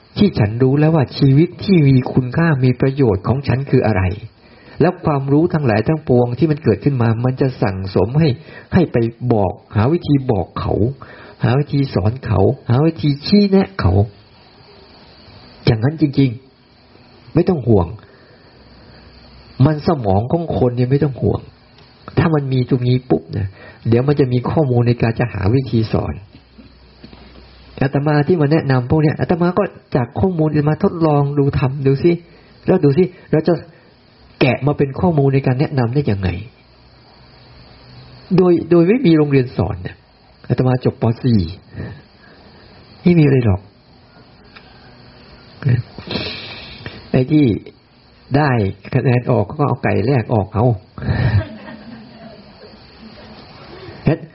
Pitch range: 110-150 Hz